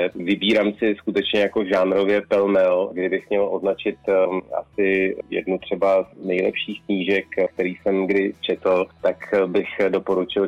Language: Slovak